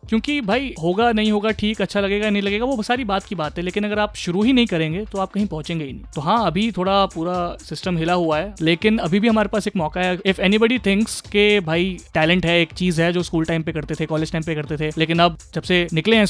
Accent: native